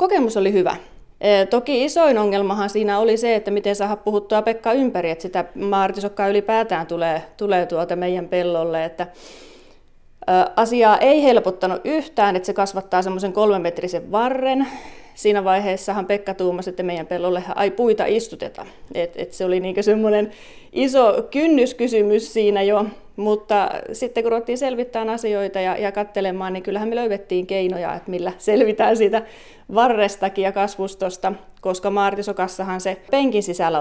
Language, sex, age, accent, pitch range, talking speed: Finnish, female, 30-49, native, 180-210 Hz, 145 wpm